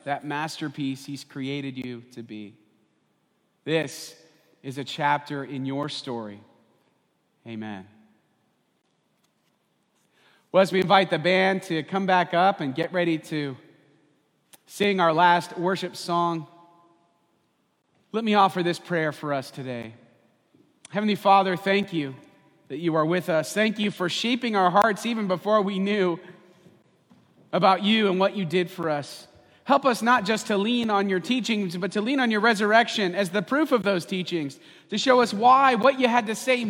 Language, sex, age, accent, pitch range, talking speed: English, male, 30-49, American, 140-200 Hz, 160 wpm